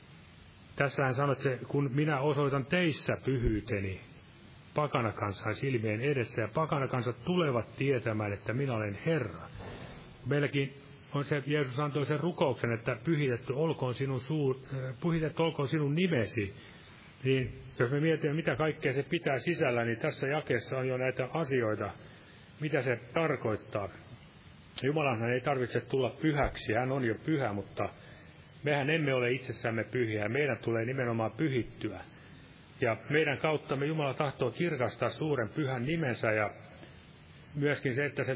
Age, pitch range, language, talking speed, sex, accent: 30-49, 120-150 Hz, Finnish, 140 wpm, male, native